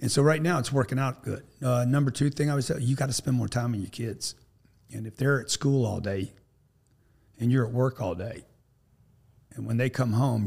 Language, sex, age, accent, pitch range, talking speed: English, male, 40-59, American, 115-140 Hz, 240 wpm